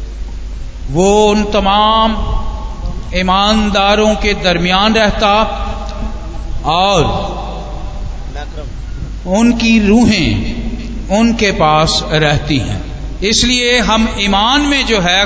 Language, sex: Hindi, male